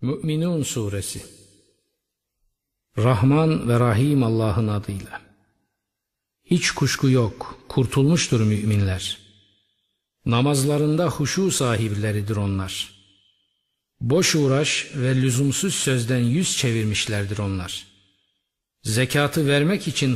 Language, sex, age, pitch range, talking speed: Turkish, male, 50-69, 105-135 Hz, 80 wpm